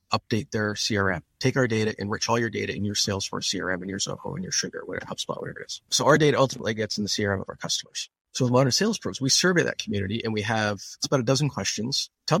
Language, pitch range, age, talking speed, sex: English, 105-150 Hz, 30-49, 255 wpm, male